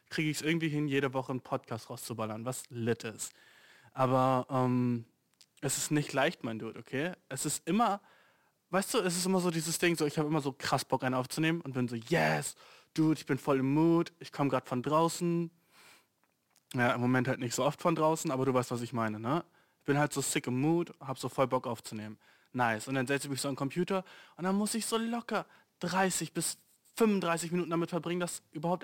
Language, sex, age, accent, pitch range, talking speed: German, male, 20-39, German, 135-175 Hz, 225 wpm